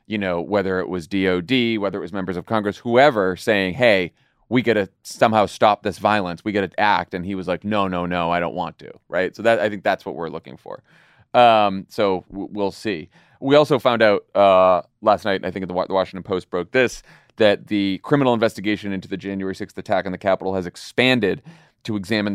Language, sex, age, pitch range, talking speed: English, male, 30-49, 95-115 Hz, 230 wpm